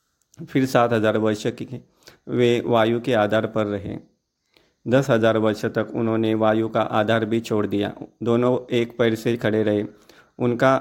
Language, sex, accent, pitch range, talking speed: Hindi, male, native, 110-120 Hz, 155 wpm